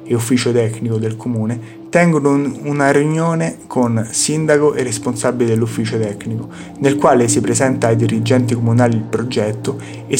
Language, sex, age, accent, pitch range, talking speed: Italian, male, 30-49, native, 110-140 Hz, 140 wpm